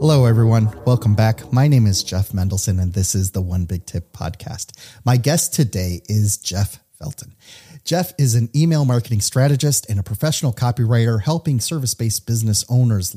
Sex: male